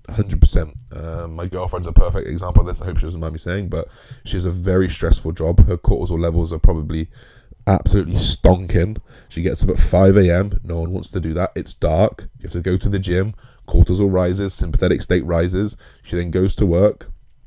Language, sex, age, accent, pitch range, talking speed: English, male, 20-39, British, 85-100 Hz, 205 wpm